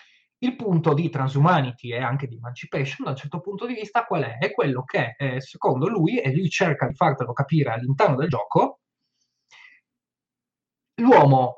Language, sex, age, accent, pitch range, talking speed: Italian, male, 20-39, native, 135-185 Hz, 165 wpm